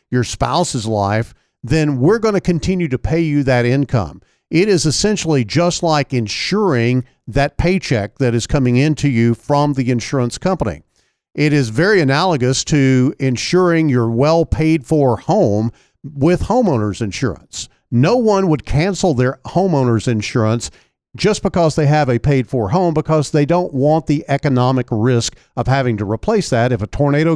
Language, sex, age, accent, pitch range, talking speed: English, male, 50-69, American, 120-165 Hz, 155 wpm